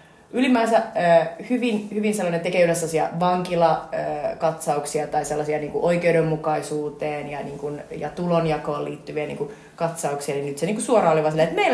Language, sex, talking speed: Finnish, female, 135 wpm